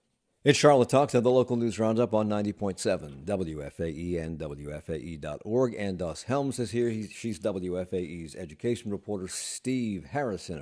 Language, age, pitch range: English, 50-69, 85-120 Hz